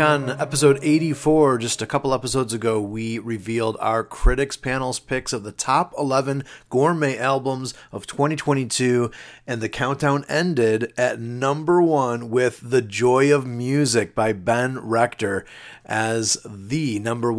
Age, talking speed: 30-49, 140 wpm